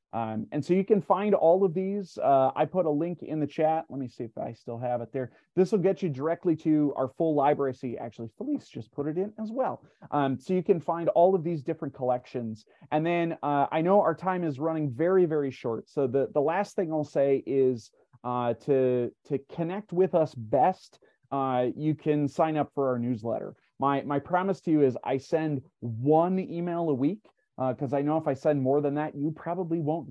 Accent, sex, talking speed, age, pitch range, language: American, male, 230 wpm, 30-49, 130-170 Hz, English